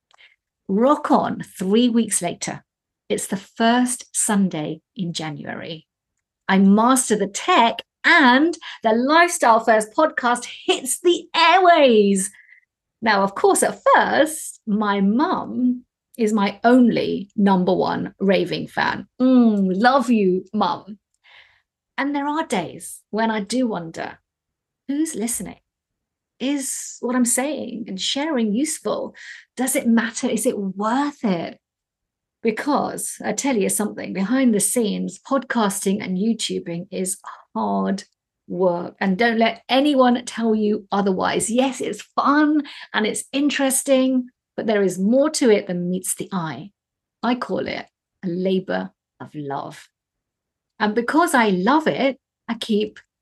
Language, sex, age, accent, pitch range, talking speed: English, female, 50-69, British, 195-265 Hz, 130 wpm